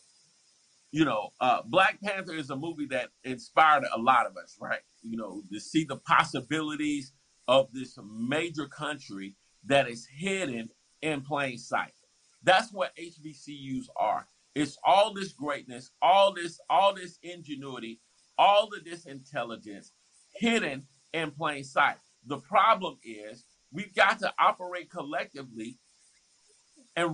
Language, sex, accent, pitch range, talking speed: English, male, American, 135-190 Hz, 135 wpm